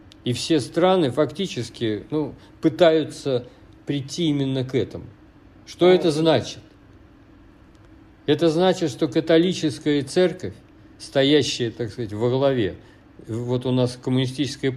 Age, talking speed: 50-69, 110 wpm